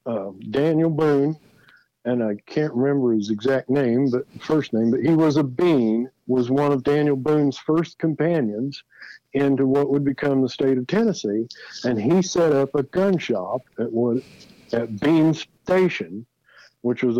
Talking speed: 160 wpm